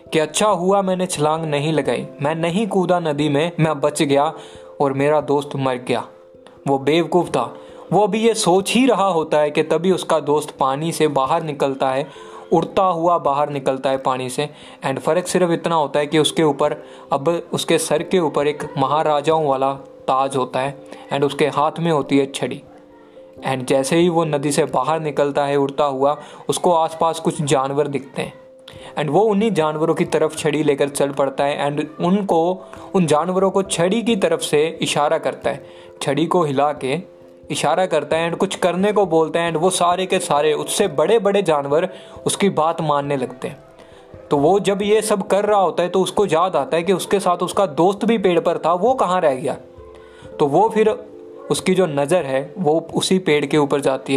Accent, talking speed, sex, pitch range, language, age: native, 200 wpm, male, 145-180 Hz, Hindi, 20-39